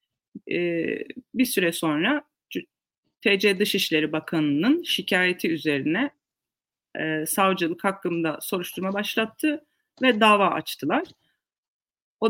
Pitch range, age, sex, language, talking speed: 180-220 Hz, 30-49, female, Turkish, 90 wpm